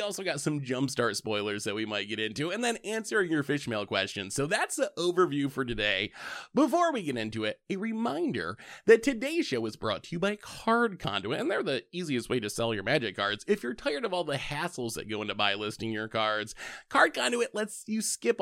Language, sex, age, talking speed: English, male, 20-39, 220 wpm